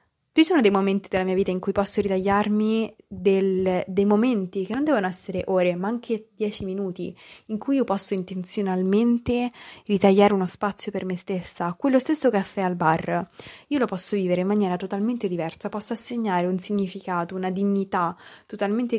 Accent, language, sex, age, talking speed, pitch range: native, Italian, female, 20-39, 170 wpm, 185-220 Hz